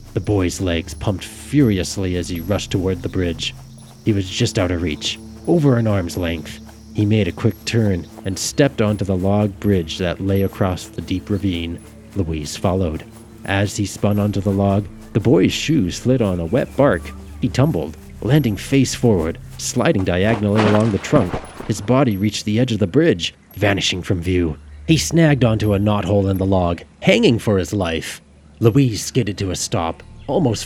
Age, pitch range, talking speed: 30-49, 80-110 Hz, 180 wpm